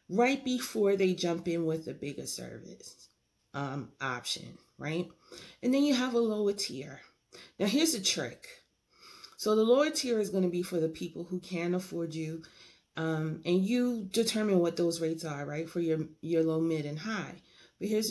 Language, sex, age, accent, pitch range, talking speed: English, female, 30-49, American, 165-220 Hz, 185 wpm